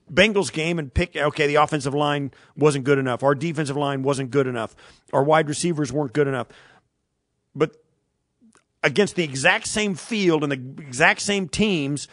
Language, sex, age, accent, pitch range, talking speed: English, male, 50-69, American, 150-190 Hz, 170 wpm